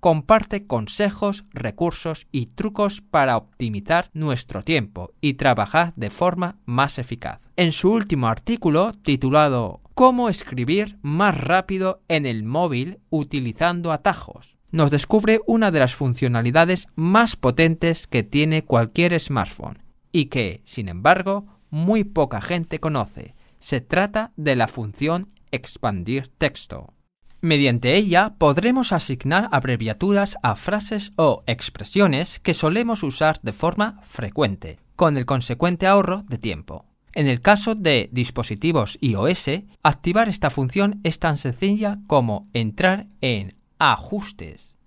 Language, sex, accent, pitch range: Chinese, male, Spanish, 125-185 Hz